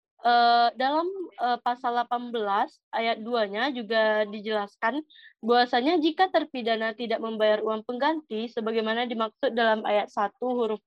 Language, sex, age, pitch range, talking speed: Indonesian, female, 20-39, 225-270 Hz, 110 wpm